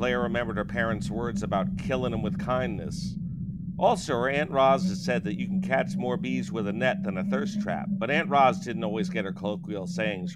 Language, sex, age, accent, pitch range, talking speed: English, male, 50-69, American, 170-200 Hz, 220 wpm